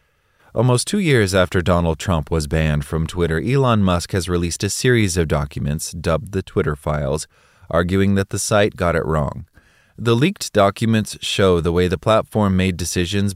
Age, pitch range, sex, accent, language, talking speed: 20-39, 80-100 Hz, male, American, English, 175 wpm